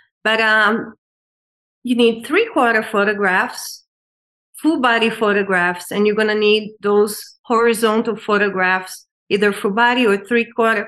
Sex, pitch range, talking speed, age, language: female, 210-255 Hz, 130 wpm, 30-49, English